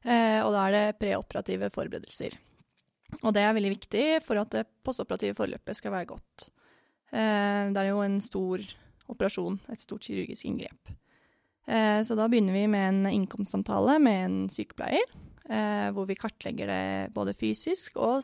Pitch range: 195-230 Hz